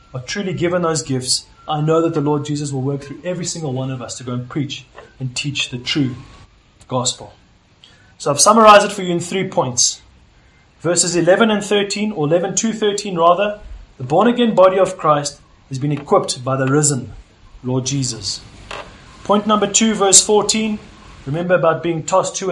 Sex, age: male, 30-49